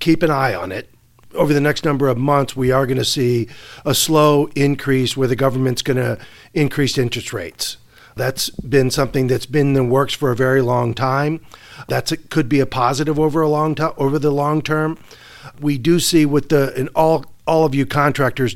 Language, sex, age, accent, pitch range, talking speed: English, male, 50-69, American, 125-150 Hz, 205 wpm